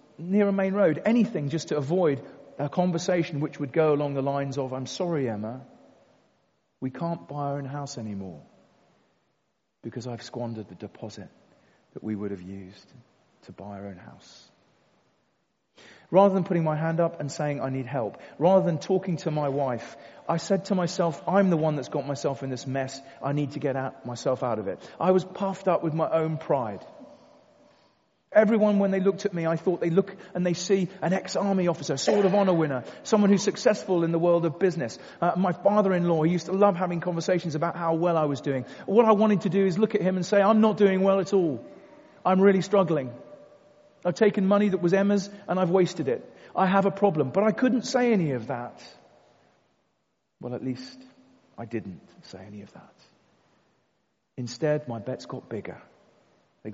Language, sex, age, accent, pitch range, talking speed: English, male, 40-59, British, 135-195 Hz, 200 wpm